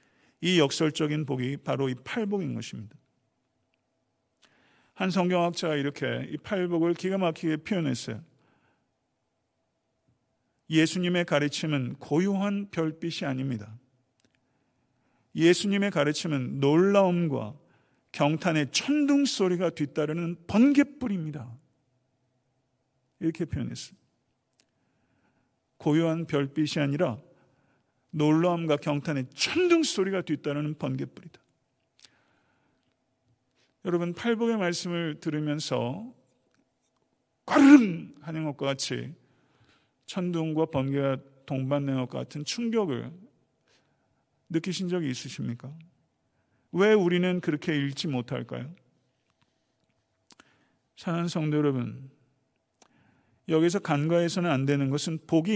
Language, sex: Korean, male